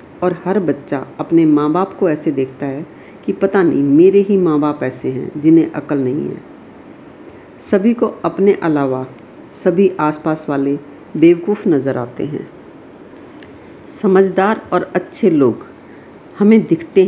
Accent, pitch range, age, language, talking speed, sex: native, 155-200 Hz, 50-69, Hindi, 140 wpm, female